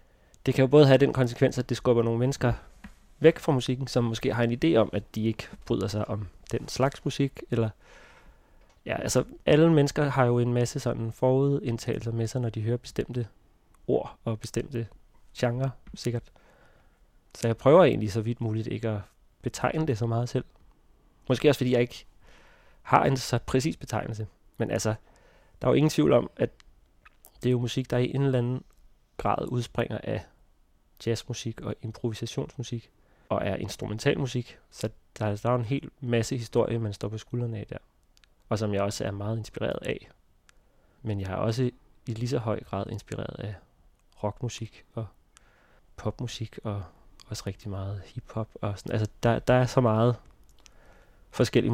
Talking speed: 180 wpm